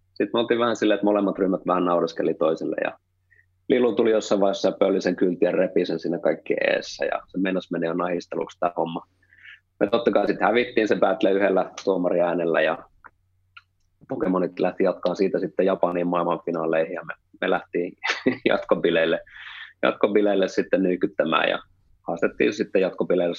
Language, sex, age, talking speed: Finnish, male, 30-49, 145 wpm